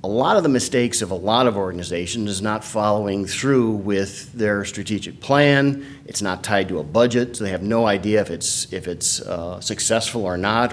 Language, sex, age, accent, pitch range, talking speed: English, male, 50-69, American, 95-120 Hz, 205 wpm